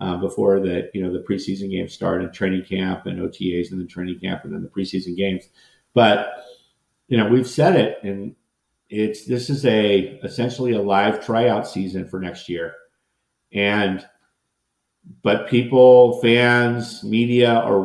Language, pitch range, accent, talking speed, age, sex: English, 95-120 Hz, American, 160 wpm, 50-69, male